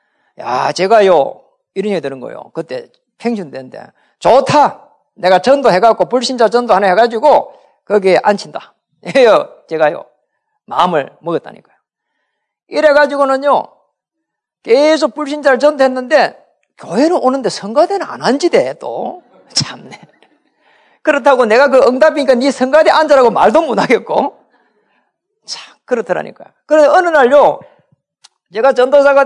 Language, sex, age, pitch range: Korean, male, 40-59, 235-295 Hz